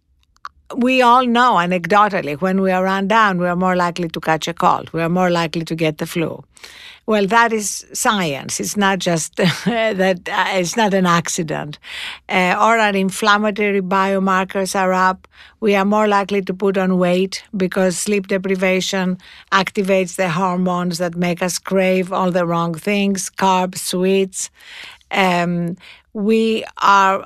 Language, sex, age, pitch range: English, female, 50-69, 180-210 Hz